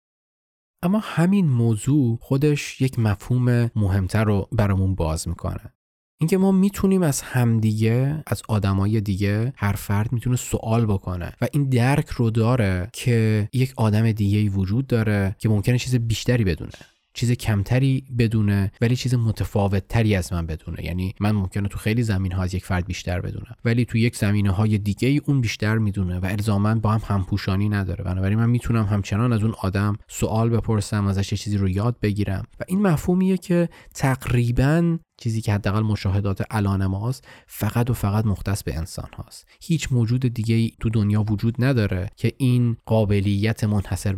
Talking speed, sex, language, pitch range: 165 wpm, male, Persian, 100-120 Hz